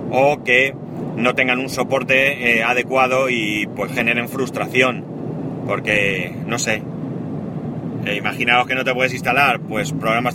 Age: 30-49